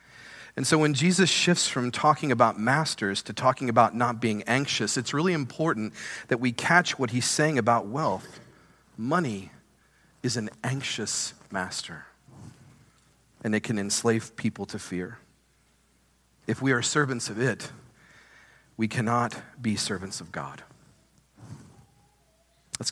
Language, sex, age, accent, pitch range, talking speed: English, male, 40-59, American, 105-135 Hz, 135 wpm